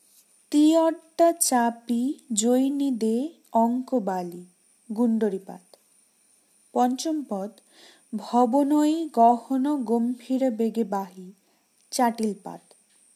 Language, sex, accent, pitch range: Bengali, female, native, 225-290 Hz